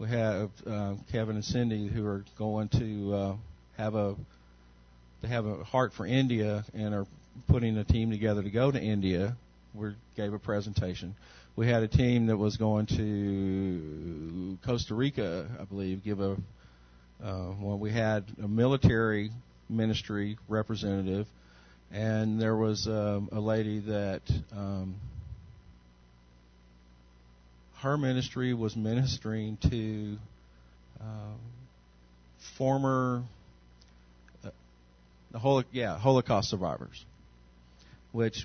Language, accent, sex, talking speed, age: English, American, male, 120 wpm, 50-69